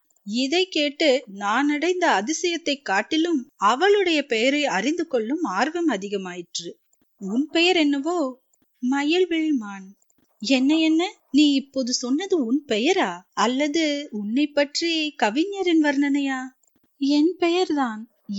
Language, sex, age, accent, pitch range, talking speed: Tamil, female, 30-49, native, 230-310 Hz, 100 wpm